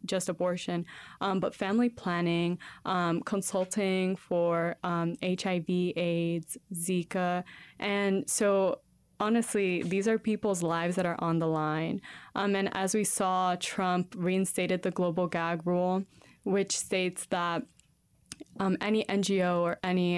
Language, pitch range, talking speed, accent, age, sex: English, 175-195 Hz, 130 wpm, American, 20-39, female